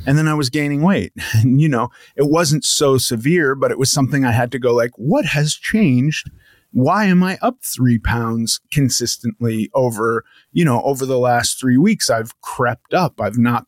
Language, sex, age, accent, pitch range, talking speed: English, male, 30-49, American, 120-150 Hz, 195 wpm